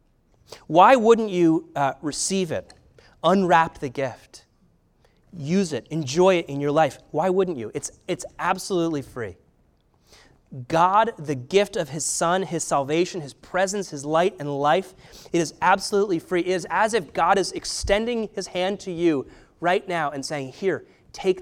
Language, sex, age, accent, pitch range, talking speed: English, male, 30-49, American, 140-185 Hz, 165 wpm